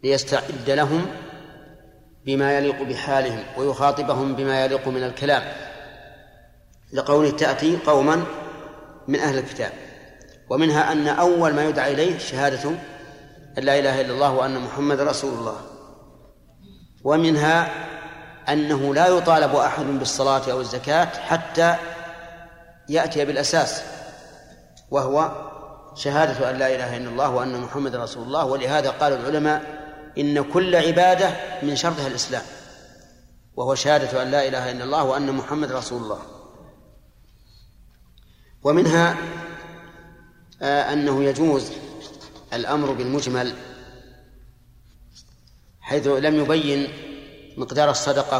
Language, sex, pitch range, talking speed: Arabic, male, 135-155 Hz, 105 wpm